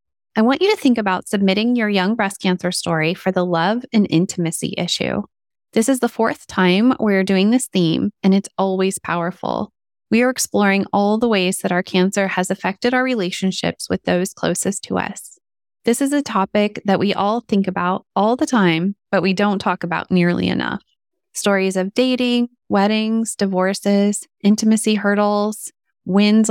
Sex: female